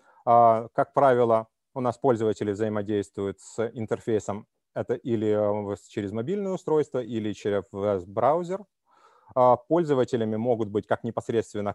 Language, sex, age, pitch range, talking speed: Ukrainian, male, 30-49, 105-125 Hz, 105 wpm